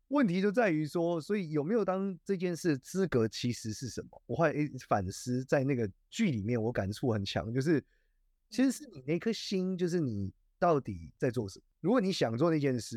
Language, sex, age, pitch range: Chinese, male, 30-49, 110-170 Hz